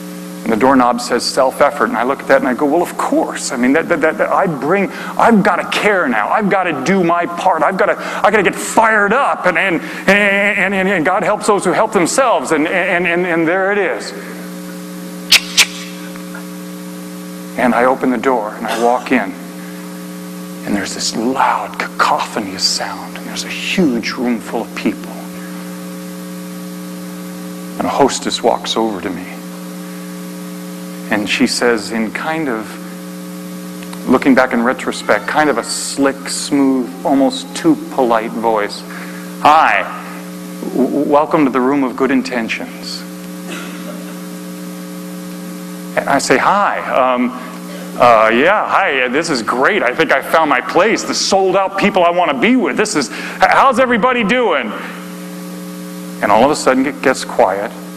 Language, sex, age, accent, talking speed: English, male, 40-59, American, 165 wpm